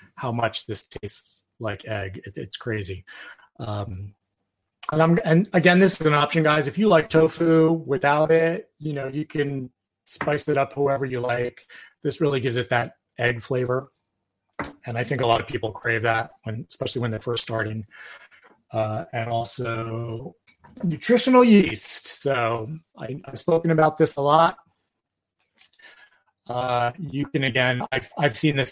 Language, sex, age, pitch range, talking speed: English, male, 30-49, 110-145 Hz, 165 wpm